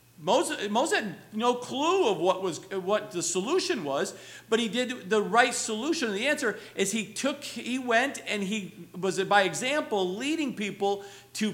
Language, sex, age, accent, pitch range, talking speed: English, male, 50-69, American, 175-260 Hz, 175 wpm